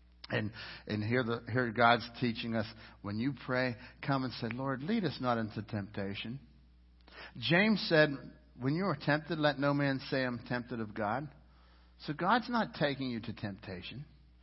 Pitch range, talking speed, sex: 125-195 Hz, 170 wpm, male